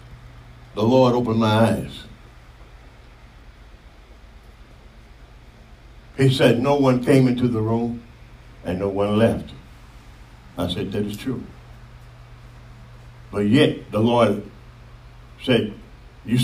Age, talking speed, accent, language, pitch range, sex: 60-79, 100 wpm, American, English, 85-120 Hz, male